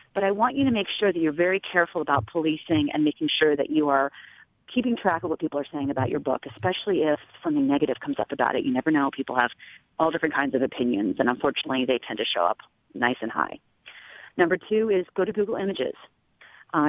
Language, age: English, 40-59